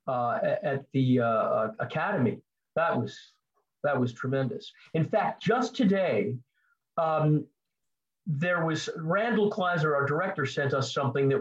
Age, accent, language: 50-69, American, English